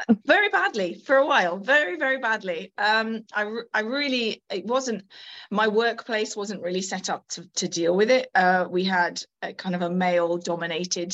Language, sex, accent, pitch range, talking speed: English, female, British, 180-215 Hz, 180 wpm